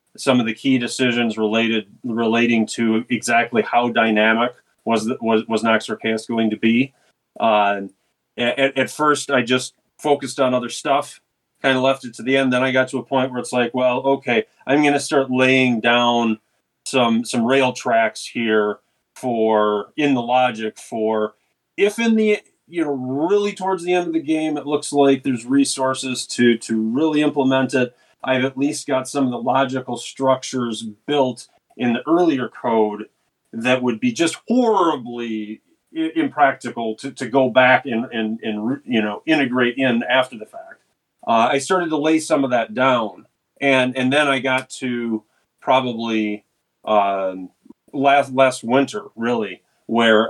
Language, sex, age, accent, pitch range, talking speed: English, male, 30-49, American, 115-135 Hz, 170 wpm